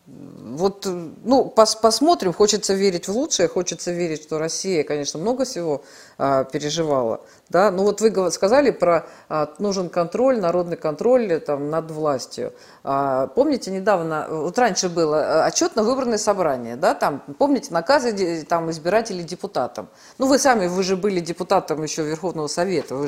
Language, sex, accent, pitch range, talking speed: Russian, female, native, 165-230 Hz, 145 wpm